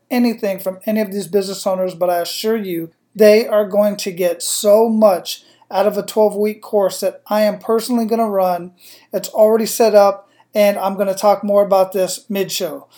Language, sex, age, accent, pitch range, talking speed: English, male, 40-59, American, 190-220 Hz, 200 wpm